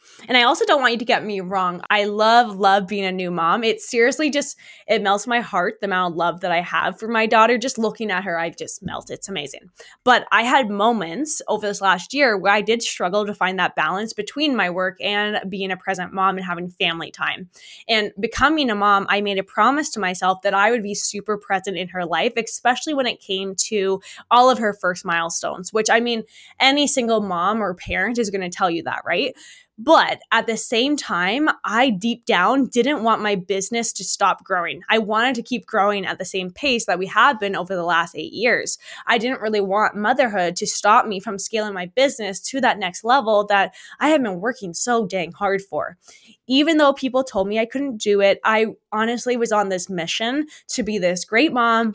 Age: 20-39